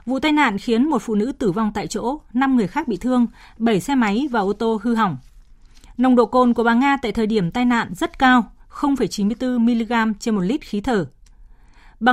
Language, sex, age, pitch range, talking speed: Vietnamese, female, 20-39, 205-250 Hz, 220 wpm